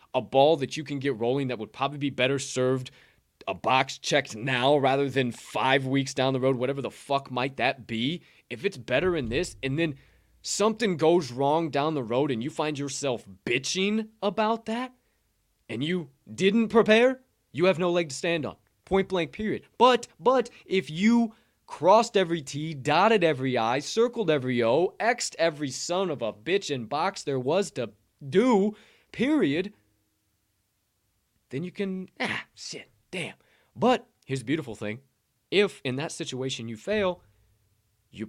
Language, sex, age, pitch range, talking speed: English, male, 20-39, 125-180 Hz, 170 wpm